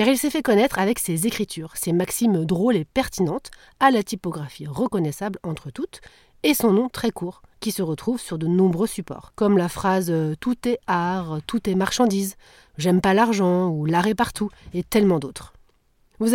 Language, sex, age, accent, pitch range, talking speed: French, female, 30-49, French, 180-245 Hz, 200 wpm